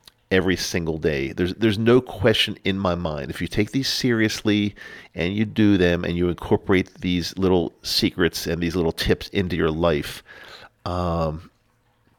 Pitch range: 80-110 Hz